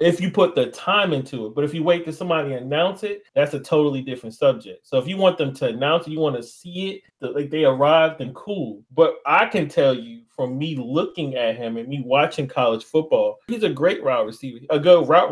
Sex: male